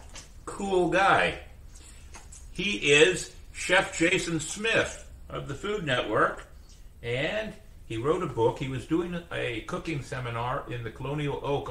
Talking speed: 135 wpm